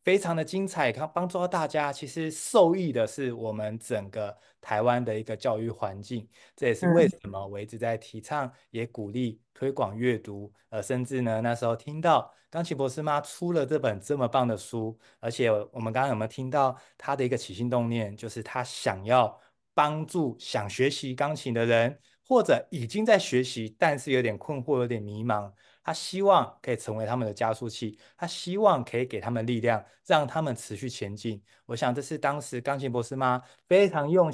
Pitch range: 115-145 Hz